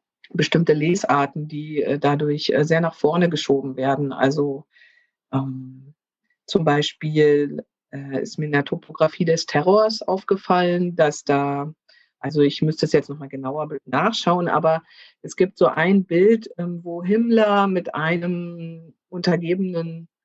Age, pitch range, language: 50-69, 155-190 Hz, German